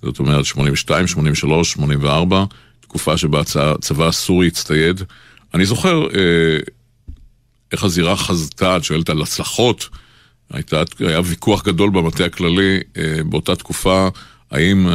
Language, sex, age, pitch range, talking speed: Hebrew, male, 50-69, 80-95 Hz, 110 wpm